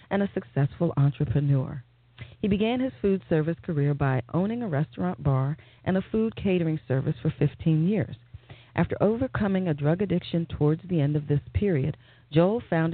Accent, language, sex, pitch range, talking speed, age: American, English, female, 135-170 Hz, 165 wpm, 40-59